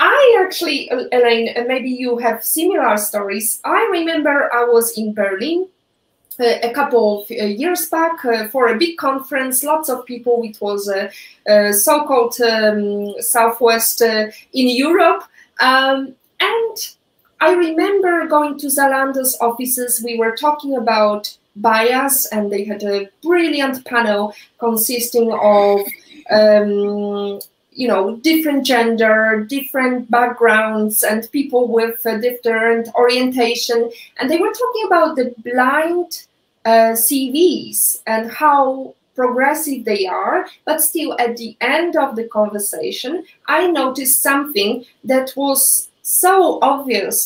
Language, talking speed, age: English, 125 wpm, 20-39